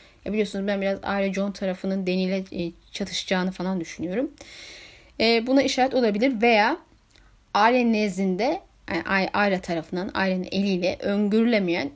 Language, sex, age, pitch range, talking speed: Turkish, female, 10-29, 195-265 Hz, 110 wpm